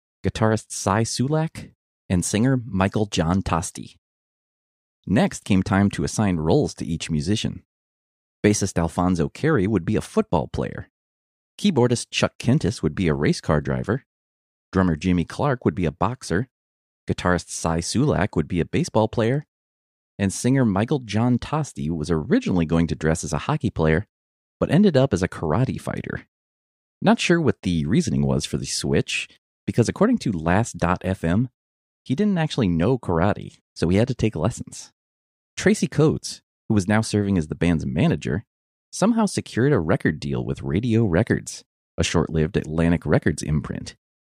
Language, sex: English, male